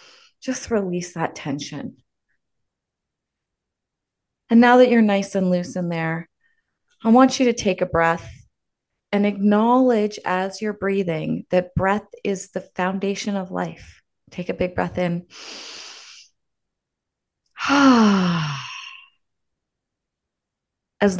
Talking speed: 110 wpm